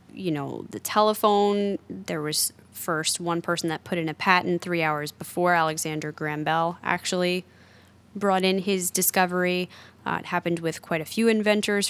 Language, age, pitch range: English, 10-29, 160-200 Hz